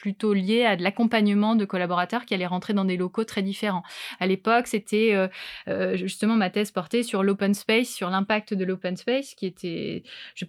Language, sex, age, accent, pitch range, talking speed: French, female, 20-39, French, 190-225 Hz, 205 wpm